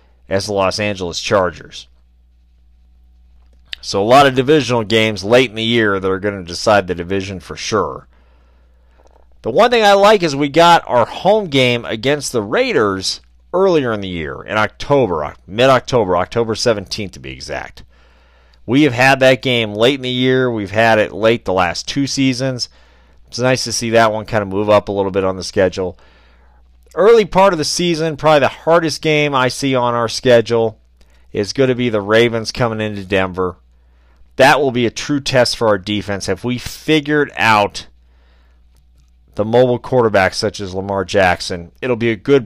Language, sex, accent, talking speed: English, male, American, 185 wpm